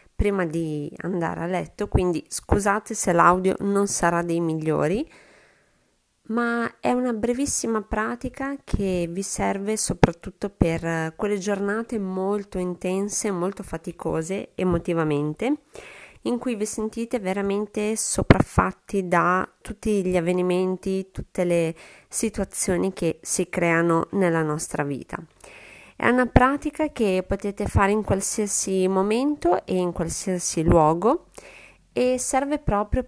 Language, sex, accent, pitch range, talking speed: Italian, female, native, 170-215 Hz, 120 wpm